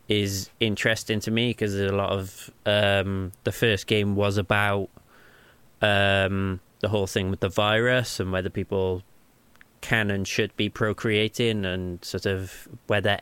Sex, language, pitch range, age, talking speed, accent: male, English, 95-115 Hz, 20-39, 150 wpm, British